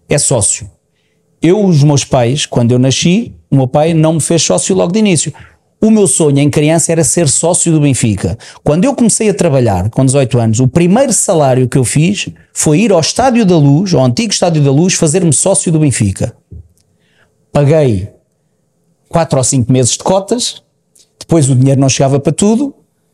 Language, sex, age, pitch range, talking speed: Portuguese, male, 40-59, 135-175 Hz, 185 wpm